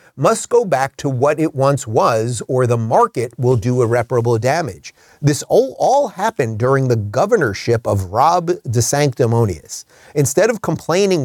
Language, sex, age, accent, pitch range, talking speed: English, male, 30-49, American, 115-160 Hz, 155 wpm